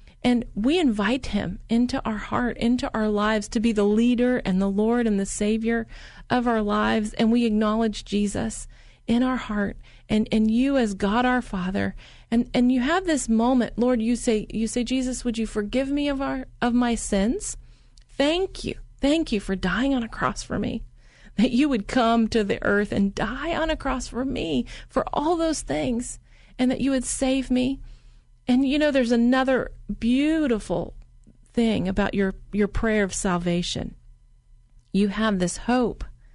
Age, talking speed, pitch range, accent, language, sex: 40-59, 180 wpm, 205-250 Hz, American, English, female